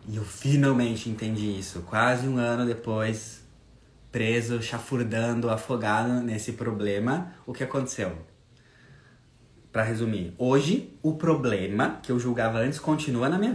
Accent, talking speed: Brazilian, 130 wpm